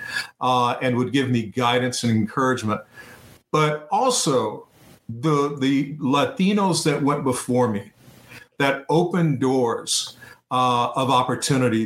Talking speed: 115 wpm